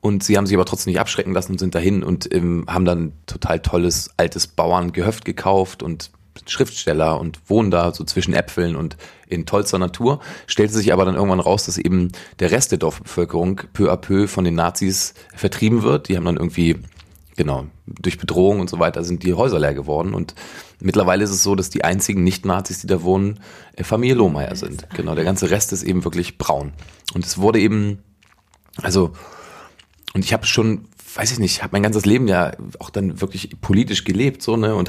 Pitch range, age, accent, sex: 90-105 Hz, 30-49, German, male